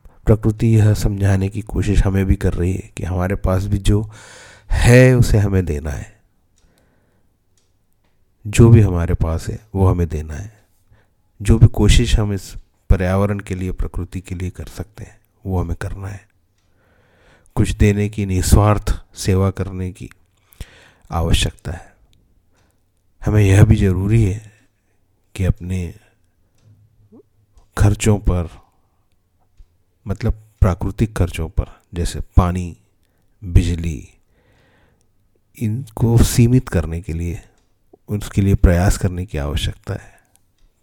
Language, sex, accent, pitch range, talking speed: Hindi, male, native, 90-105 Hz, 125 wpm